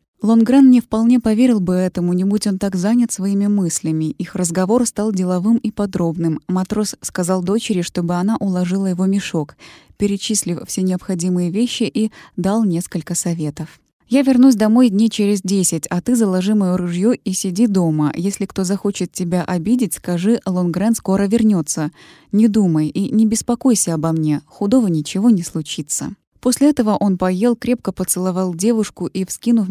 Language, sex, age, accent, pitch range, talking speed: Russian, female, 20-39, native, 180-220 Hz, 160 wpm